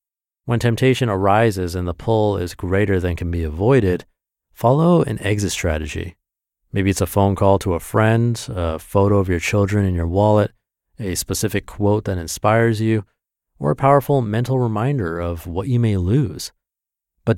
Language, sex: English, male